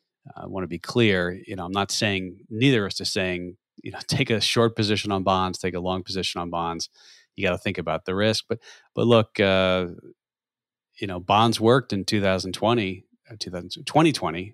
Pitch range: 90-115 Hz